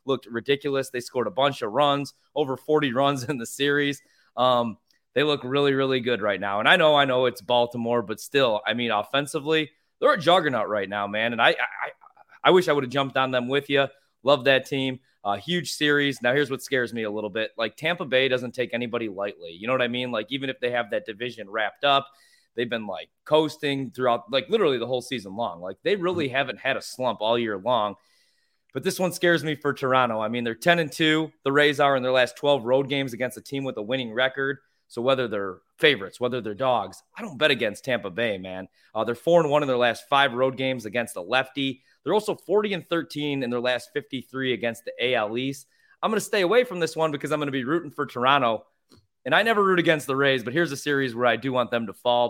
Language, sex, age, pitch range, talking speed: English, male, 20-39, 120-145 Hz, 245 wpm